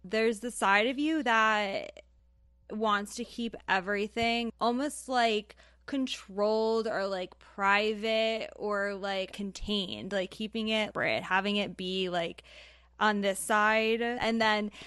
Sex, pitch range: female, 190-220 Hz